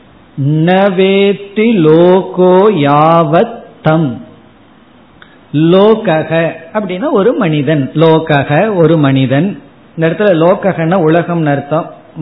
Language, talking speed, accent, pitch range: Tamil, 50 wpm, native, 145-190 Hz